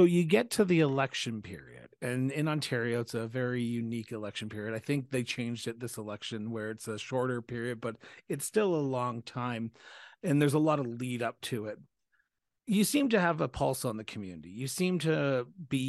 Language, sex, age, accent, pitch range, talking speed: English, male, 40-59, American, 120-145 Hz, 210 wpm